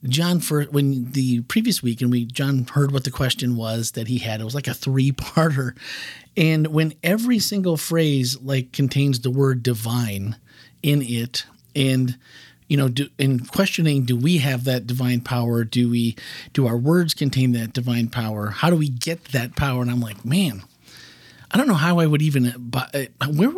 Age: 40-59